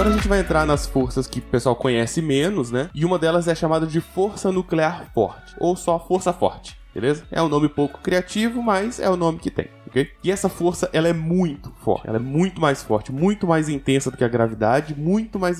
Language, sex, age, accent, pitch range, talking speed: Portuguese, male, 20-39, Brazilian, 130-170 Hz, 230 wpm